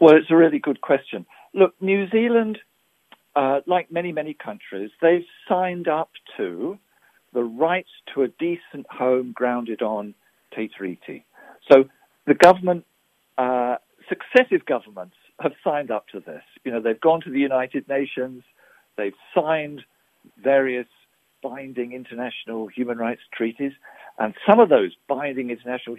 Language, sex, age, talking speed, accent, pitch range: English, male, 50-69, 140 wpm, British, 125-175 Hz